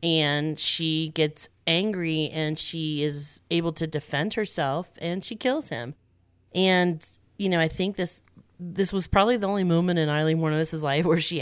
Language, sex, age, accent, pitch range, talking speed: English, female, 30-49, American, 145-175 Hz, 175 wpm